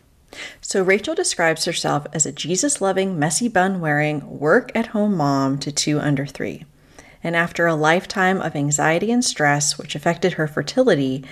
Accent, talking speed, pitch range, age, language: American, 140 wpm, 145-185 Hz, 30-49, English